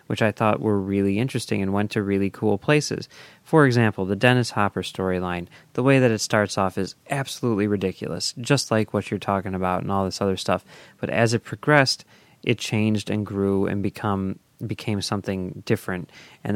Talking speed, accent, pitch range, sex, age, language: 190 wpm, American, 95-125 Hz, male, 30-49, English